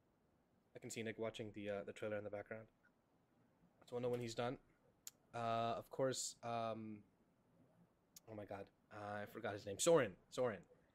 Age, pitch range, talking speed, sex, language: 20-39, 115-135 Hz, 180 wpm, male, English